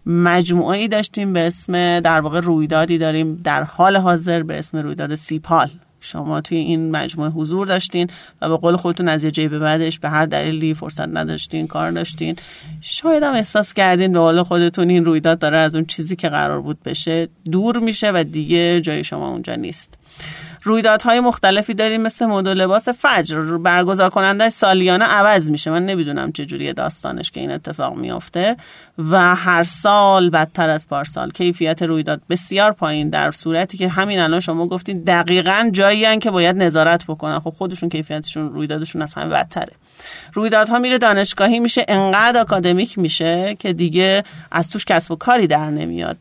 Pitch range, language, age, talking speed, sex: 165-200 Hz, Persian, 40-59, 170 wpm, male